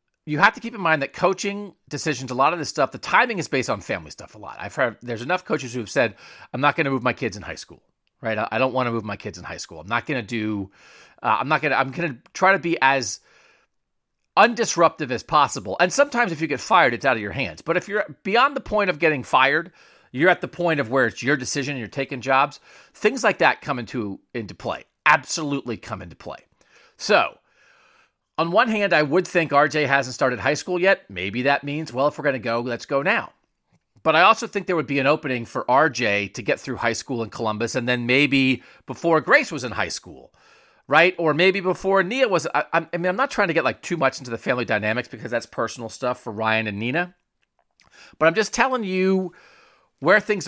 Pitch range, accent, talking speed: 120-175 Hz, American, 240 wpm